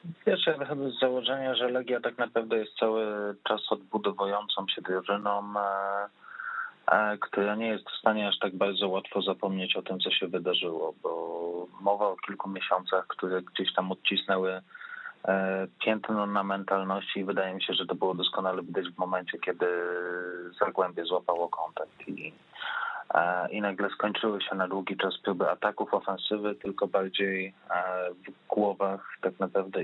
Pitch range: 95-105 Hz